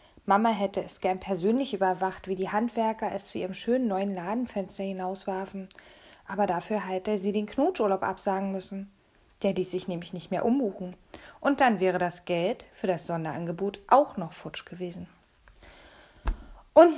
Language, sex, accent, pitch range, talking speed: German, female, German, 195-235 Hz, 155 wpm